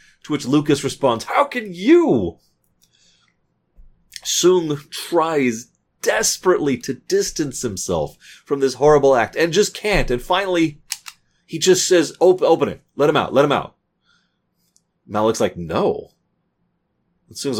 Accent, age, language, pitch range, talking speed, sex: American, 30-49, English, 105-175 Hz, 130 wpm, male